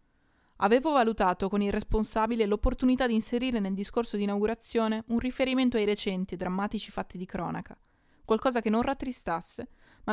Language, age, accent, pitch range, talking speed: Italian, 20-39, native, 185-230 Hz, 155 wpm